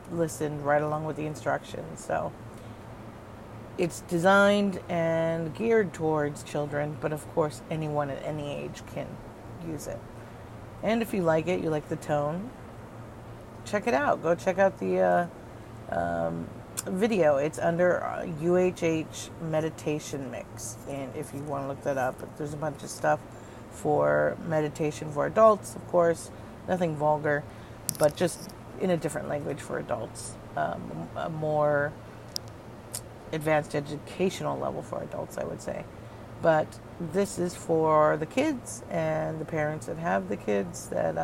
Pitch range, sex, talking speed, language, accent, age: 115-165 Hz, female, 145 wpm, English, American, 40-59